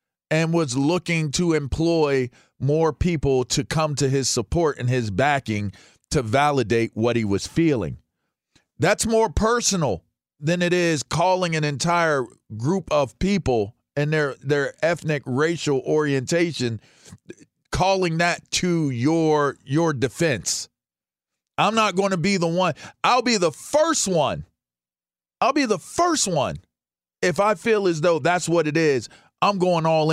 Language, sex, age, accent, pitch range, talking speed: English, male, 40-59, American, 135-185 Hz, 145 wpm